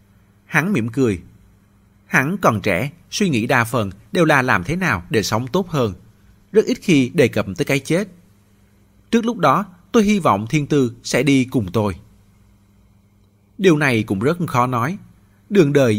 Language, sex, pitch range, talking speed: Vietnamese, male, 100-140 Hz, 175 wpm